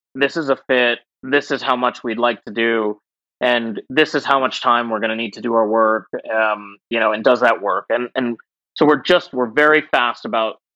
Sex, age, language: male, 30-49, English